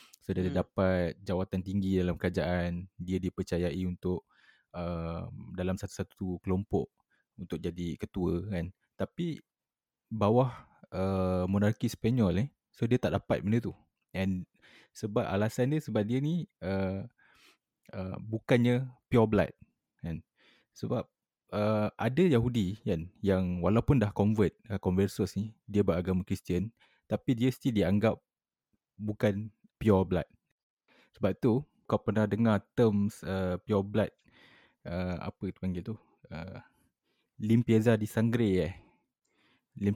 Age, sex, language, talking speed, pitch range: 20-39, male, Malay, 125 wpm, 95-115 Hz